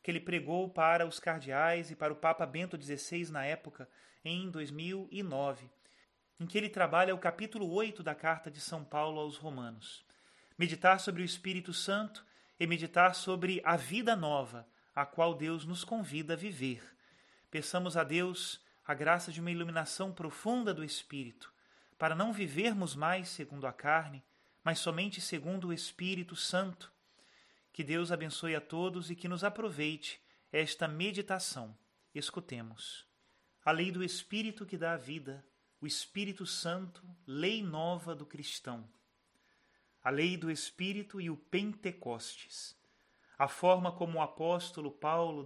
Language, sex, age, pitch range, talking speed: Portuguese, male, 30-49, 150-185 Hz, 150 wpm